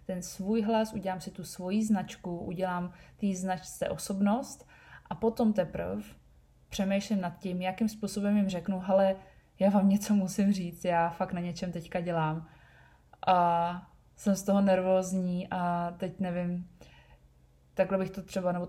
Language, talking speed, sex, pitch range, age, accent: Czech, 150 wpm, female, 170-190 Hz, 20-39, native